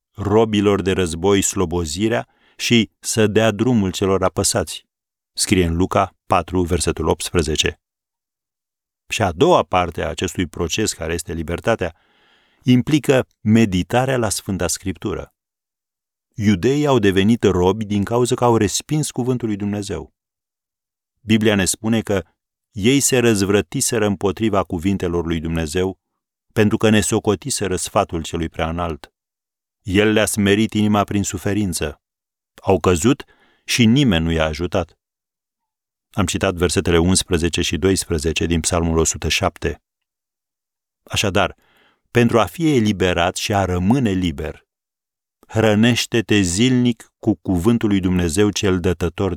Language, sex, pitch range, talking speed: Romanian, male, 90-110 Hz, 120 wpm